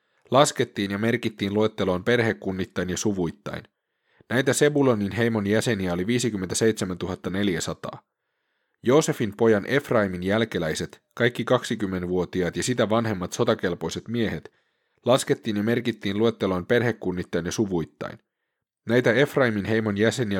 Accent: native